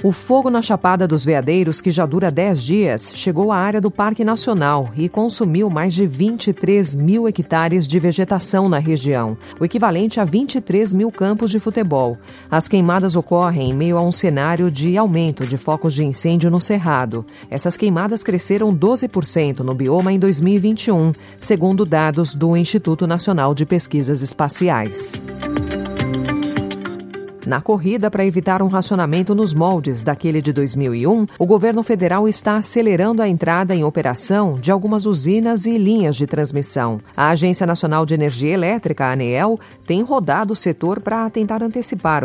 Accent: Brazilian